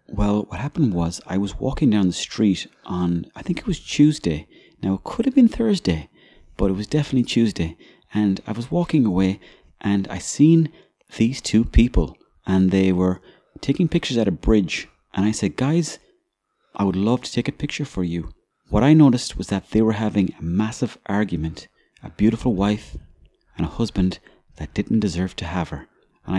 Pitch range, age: 95-140 Hz, 30-49